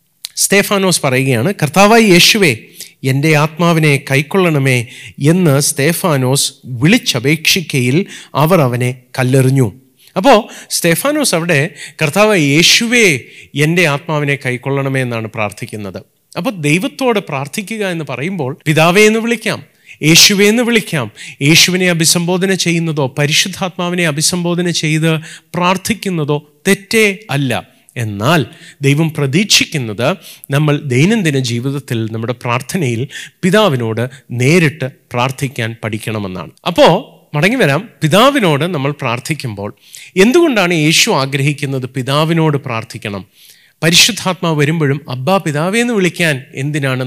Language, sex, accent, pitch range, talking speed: Malayalam, male, native, 130-180 Hz, 90 wpm